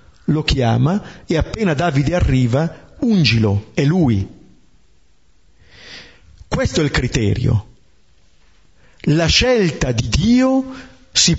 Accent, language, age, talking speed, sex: native, Italian, 50-69, 95 wpm, male